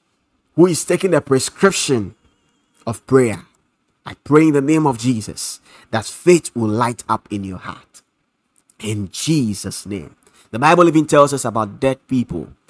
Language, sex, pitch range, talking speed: English, male, 115-155 Hz, 155 wpm